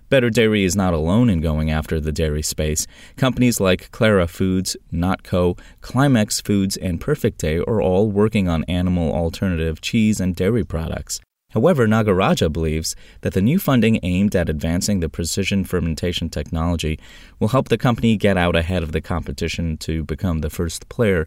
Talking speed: 165 wpm